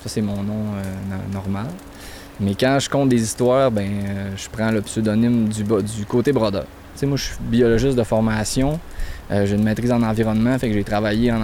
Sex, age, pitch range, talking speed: male, 20-39, 100-125 Hz, 215 wpm